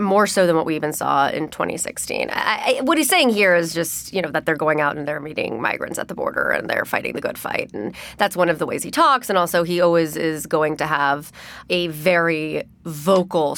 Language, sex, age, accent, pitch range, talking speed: English, female, 20-39, American, 160-220 Hz, 235 wpm